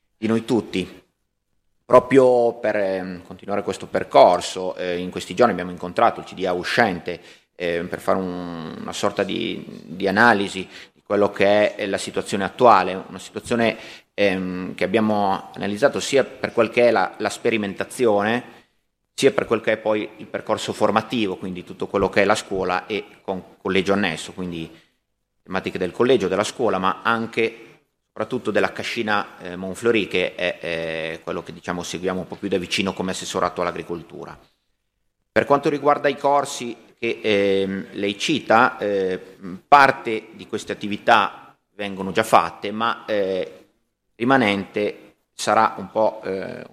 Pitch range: 90-110 Hz